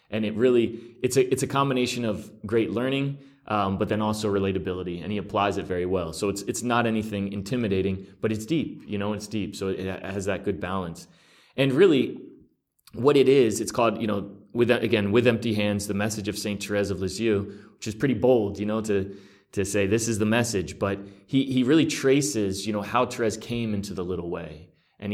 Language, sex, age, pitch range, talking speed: English, male, 30-49, 95-110 Hz, 215 wpm